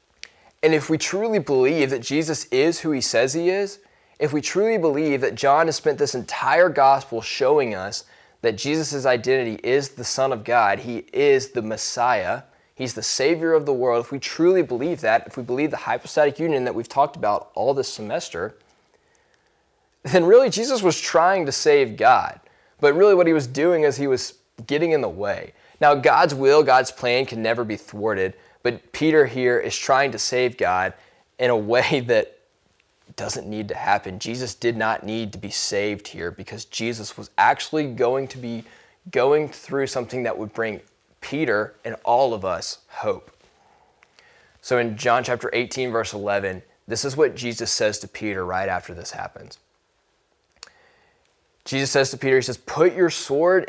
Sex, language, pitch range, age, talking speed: male, English, 115-160 Hz, 20-39, 180 wpm